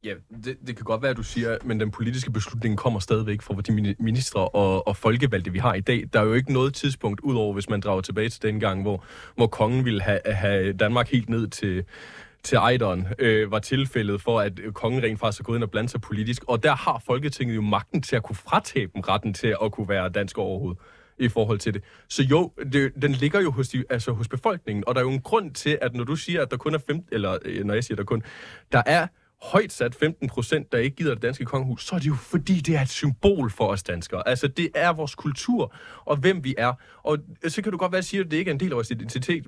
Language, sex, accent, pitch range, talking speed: Danish, male, native, 110-145 Hz, 260 wpm